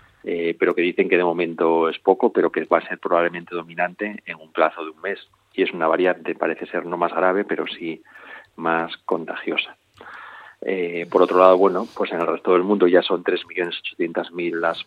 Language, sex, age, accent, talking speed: Spanish, male, 40-59, Spanish, 200 wpm